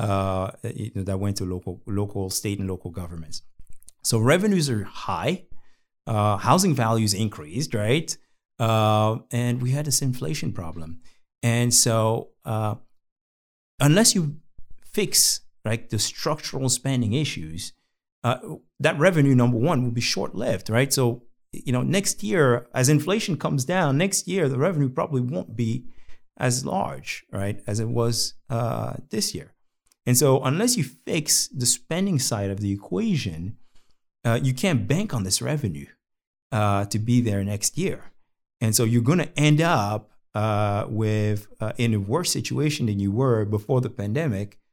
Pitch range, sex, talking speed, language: 105-135 Hz, male, 155 wpm, English